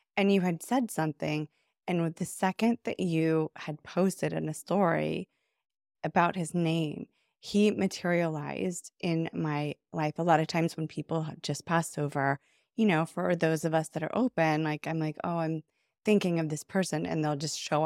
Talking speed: 190 wpm